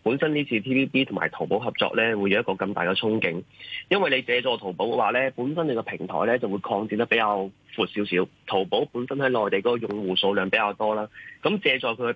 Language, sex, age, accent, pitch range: Chinese, male, 30-49, native, 100-130 Hz